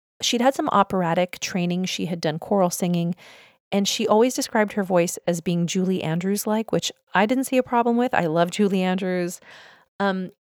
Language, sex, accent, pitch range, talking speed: English, female, American, 170-215 Hz, 185 wpm